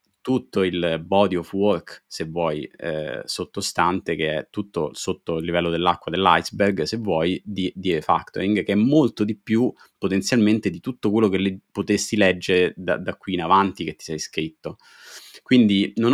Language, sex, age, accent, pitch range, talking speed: Italian, male, 30-49, native, 90-105 Hz, 165 wpm